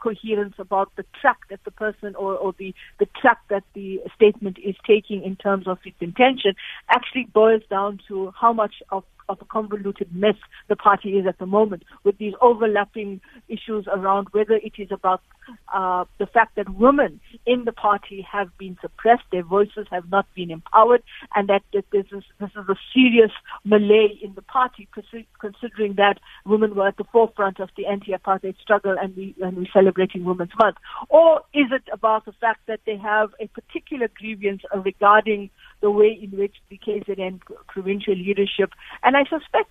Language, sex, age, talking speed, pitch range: English, female, 50-69, 180 wpm, 195-230 Hz